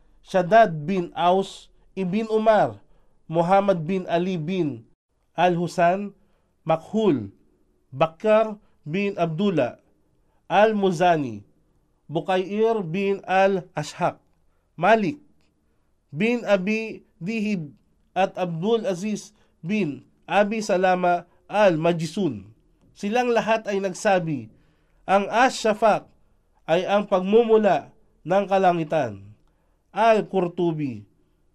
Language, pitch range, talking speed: Filipino, 155-200 Hz, 80 wpm